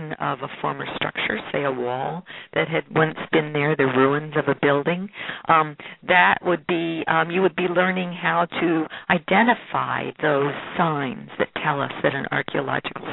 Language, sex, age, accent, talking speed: English, female, 50-69, American, 170 wpm